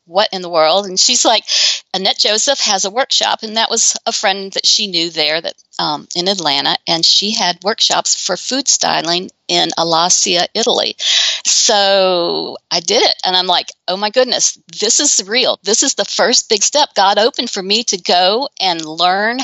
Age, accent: 50-69, American